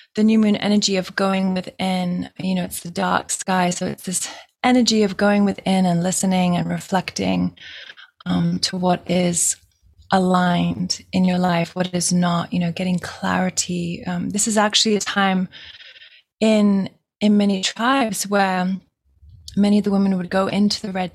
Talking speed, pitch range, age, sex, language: 165 wpm, 180-210 Hz, 20-39, female, English